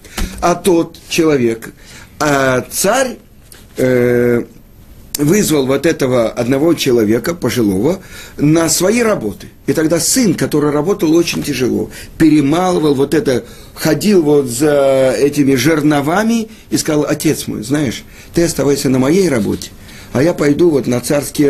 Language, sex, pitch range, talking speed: Russian, male, 105-160 Hz, 130 wpm